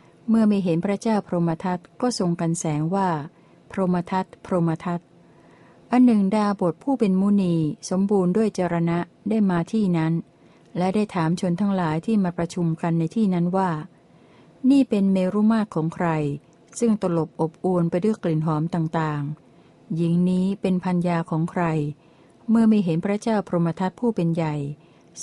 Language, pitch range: Thai, 165-205 Hz